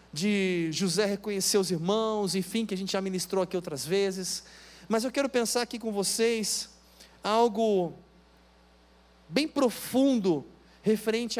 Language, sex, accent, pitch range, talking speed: Portuguese, male, Brazilian, 165-240 Hz, 130 wpm